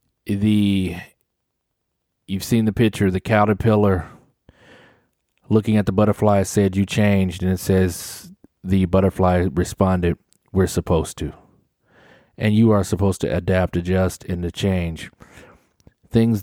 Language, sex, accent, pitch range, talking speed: English, male, American, 90-105 Hz, 125 wpm